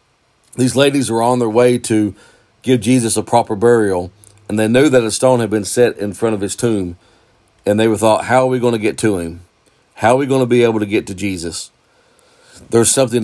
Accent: American